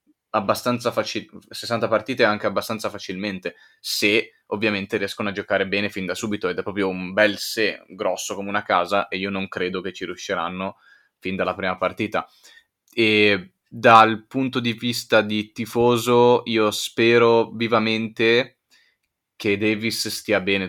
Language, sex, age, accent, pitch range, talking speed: Italian, male, 20-39, native, 100-115 Hz, 150 wpm